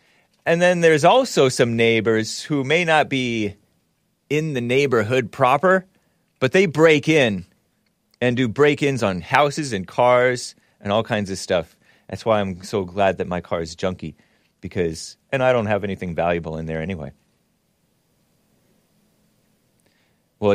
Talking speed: 150 wpm